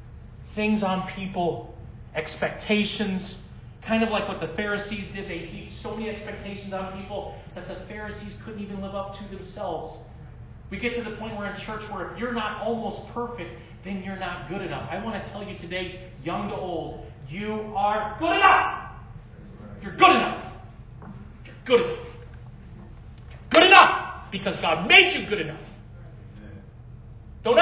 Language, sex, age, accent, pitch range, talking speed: English, male, 40-59, American, 205-335 Hz, 160 wpm